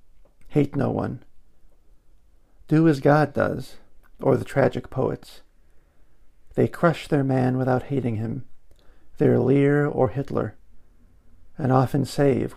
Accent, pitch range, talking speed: American, 105-145 Hz, 120 wpm